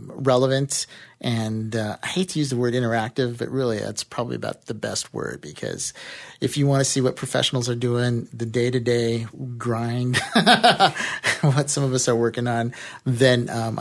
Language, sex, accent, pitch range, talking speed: English, male, American, 115-145 Hz, 175 wpm